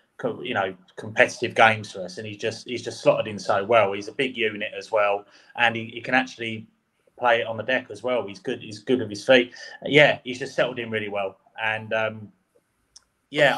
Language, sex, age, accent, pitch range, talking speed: English, male, 20-39, British, 105-125 Hz, 220 wpm